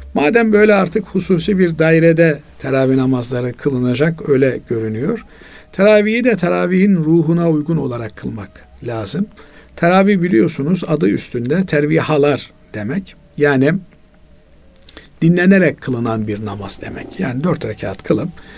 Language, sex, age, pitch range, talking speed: Turkish, male, 50-69, 130-195 Hz, 115 wpm